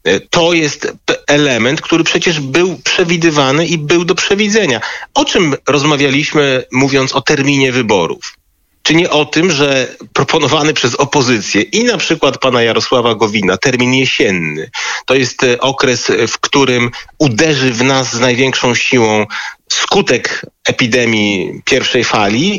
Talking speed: 130 wpm